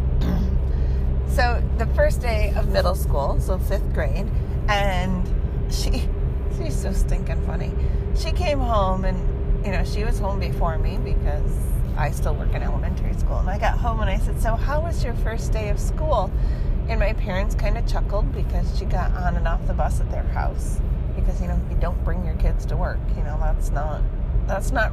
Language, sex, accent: English, female, American